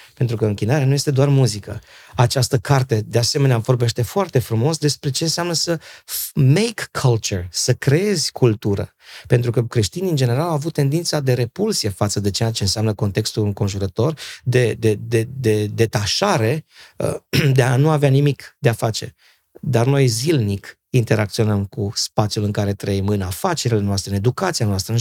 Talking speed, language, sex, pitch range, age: 170 wpm, Romanian, male, 110-140 Hz, 30-49